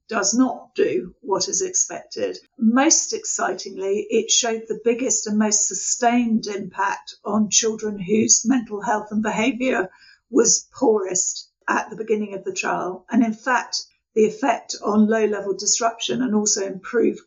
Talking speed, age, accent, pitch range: 145 wpm, 50-69, British, 190-250 Hz